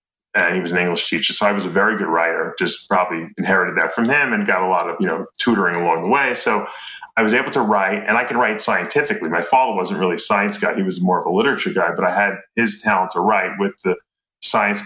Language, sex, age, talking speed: English, male, 30-49, 265 wpm